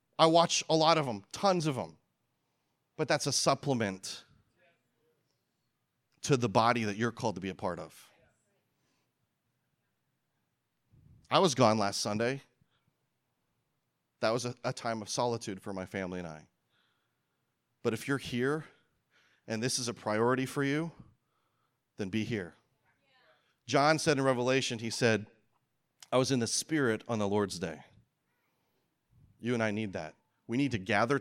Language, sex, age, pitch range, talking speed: English, male, 30-49, 110-150 Hz, 150 wpm